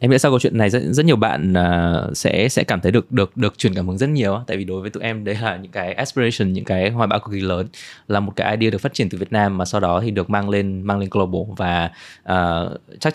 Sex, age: male, 20-39